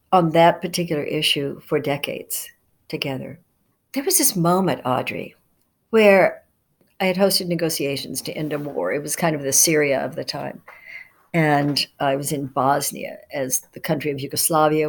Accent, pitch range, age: American, 145-180 Hz, 60-79